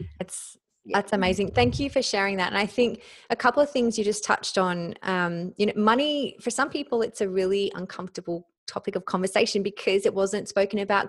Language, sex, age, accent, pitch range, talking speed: English, female, 20-39, Australian, 175-205 Hz, 205 wpm